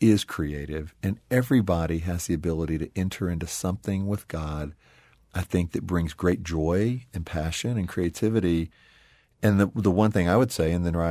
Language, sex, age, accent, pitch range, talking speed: English, male, 50-69, American, 80-100 Hz, 185 wpm